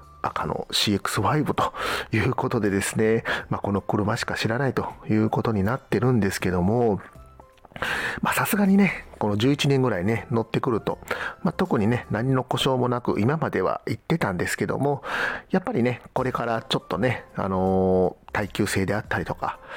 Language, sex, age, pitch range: Japanese, male, 40-59, 100-130 Hz